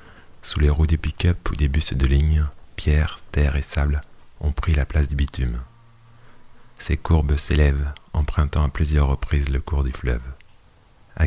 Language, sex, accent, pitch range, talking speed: French, male, French, 70-85 Hz, 170 wpm